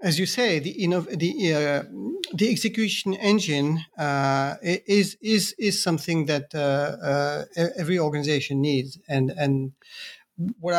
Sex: male